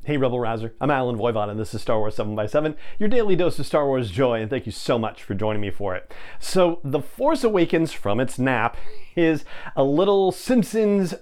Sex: male